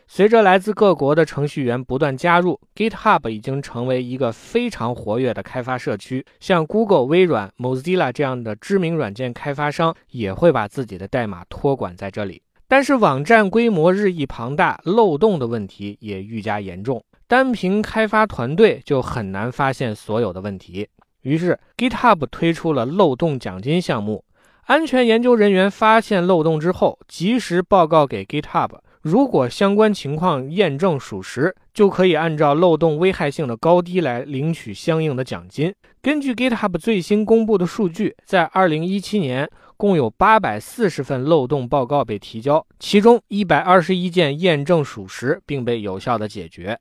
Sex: male